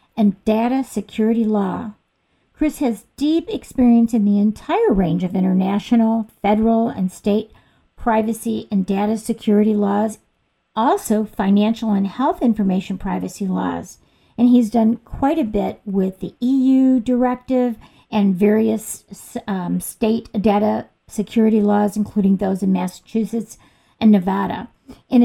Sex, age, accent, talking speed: female, 50-69, American, 125 wpm